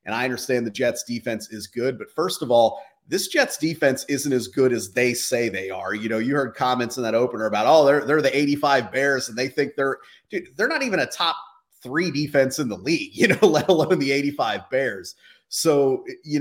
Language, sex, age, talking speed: English, male, 30-49, 225 wpm